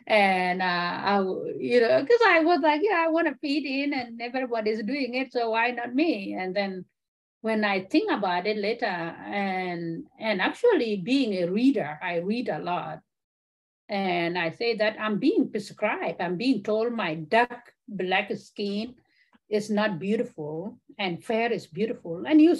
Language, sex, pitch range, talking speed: English, female, 170-225 Hz, 170 wpm